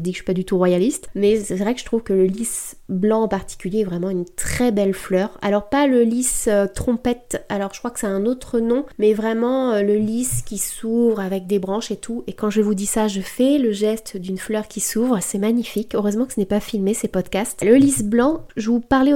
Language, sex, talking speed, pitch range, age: French, female, 250 wpm, 205-240 Hz, 20-39